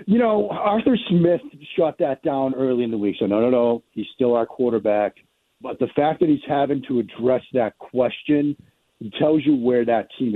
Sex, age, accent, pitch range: male, 50-69, American, 120-150 Hz